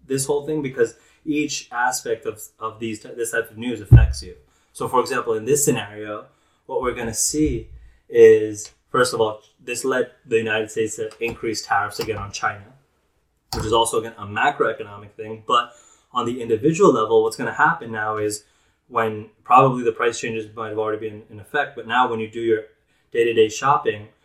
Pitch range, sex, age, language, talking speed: 105-145 Hz, male, 20-39, English, 195 wpm